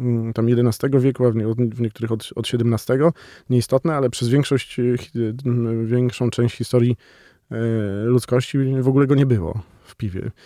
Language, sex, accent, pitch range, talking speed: Polish, male, native, 115-125 Hz, 140 wpm